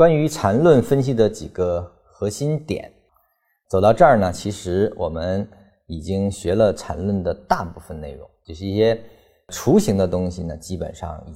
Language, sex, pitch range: Chinese, male, 85-110 Hz